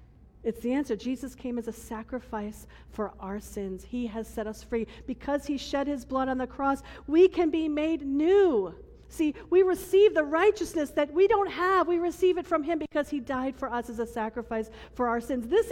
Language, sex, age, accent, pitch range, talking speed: English, female, 40-59, American, 220-300 Hz, 210 wpm